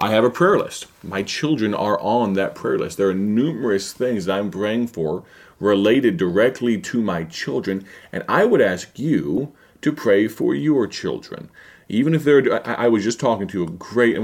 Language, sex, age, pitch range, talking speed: English, male, 30-49, 95-115 Hz, 195 wpm